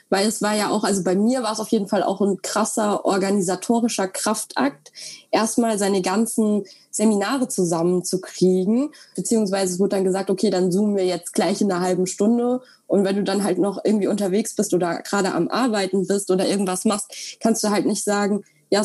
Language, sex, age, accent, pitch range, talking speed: German, female, 20-39, German, 200-240 Hz, 195 wpm